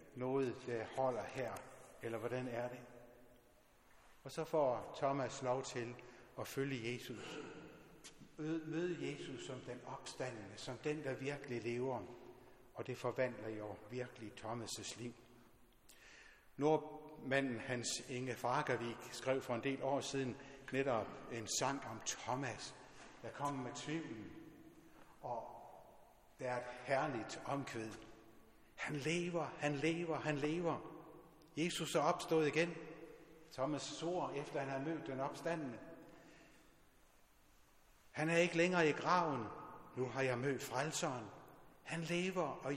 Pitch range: 120-150 Hz